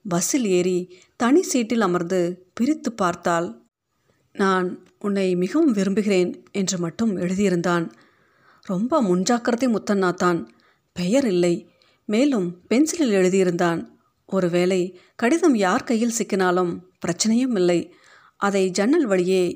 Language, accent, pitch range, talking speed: Tamil, native, 180-225 Hz, 100 wpm